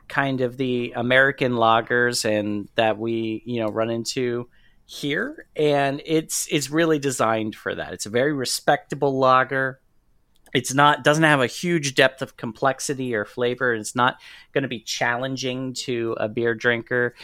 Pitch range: 110-135 Hz